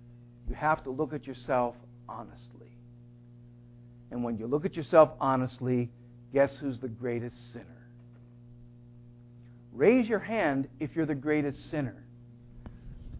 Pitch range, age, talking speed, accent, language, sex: 120-150 Hz, 60-79, 125 wpm, American, English, male